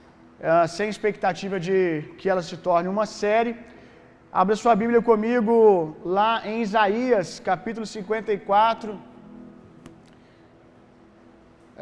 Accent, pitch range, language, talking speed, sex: Brazilian, 180-215 Hz, Gujarati, 95 wpm, male